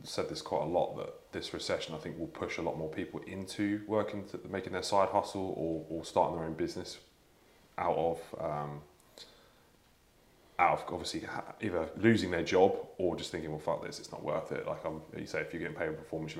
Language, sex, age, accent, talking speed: English, male, 20-39, British, 225 wpm